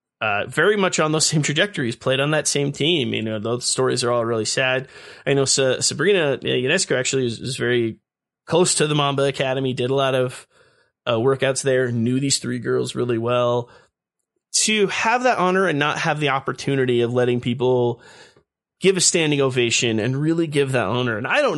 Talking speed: 195 wpm